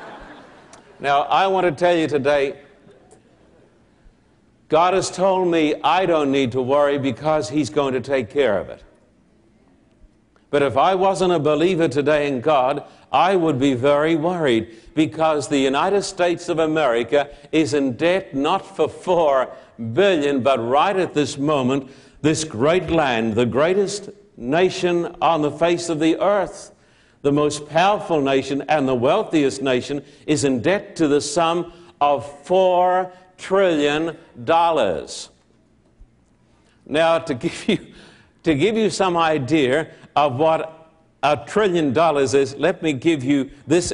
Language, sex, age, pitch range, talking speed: English, male, 60-79, 140-175 Hz, 145 wpm